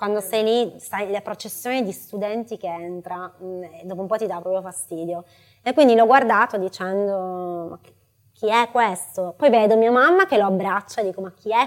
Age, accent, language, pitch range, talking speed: 20-39, native, Italian, 195-240 Hz, 195 wpm